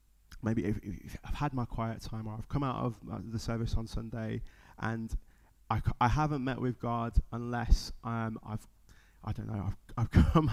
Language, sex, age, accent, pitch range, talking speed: English, male, 20-39, British, 110-125 Hz, 220 wpm